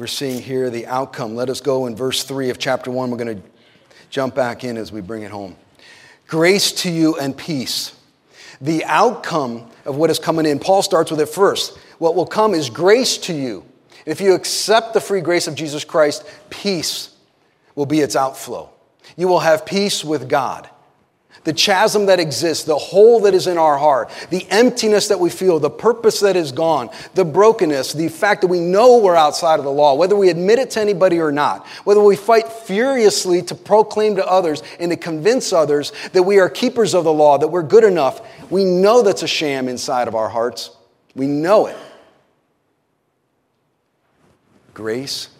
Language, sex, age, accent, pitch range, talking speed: English, male, 40-59, American, 120-185 Hz, 195 wpm